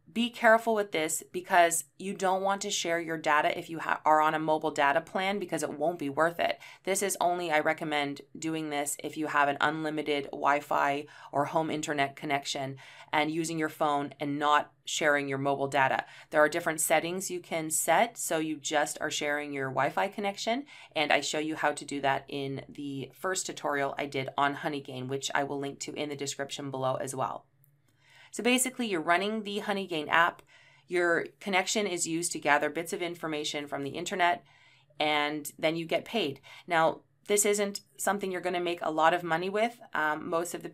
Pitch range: 145-175 Hz